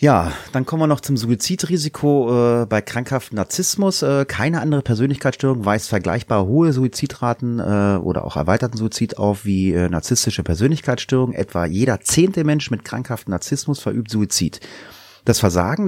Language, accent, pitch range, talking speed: German, German, 100-125 Hz, 150 wpm